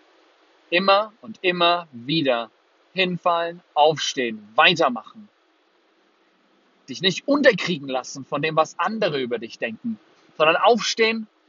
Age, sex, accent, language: 30-49, male, German, German